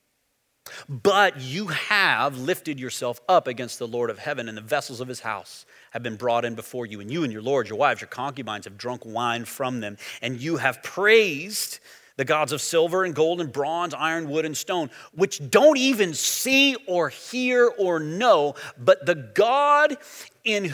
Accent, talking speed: American, 190 wpm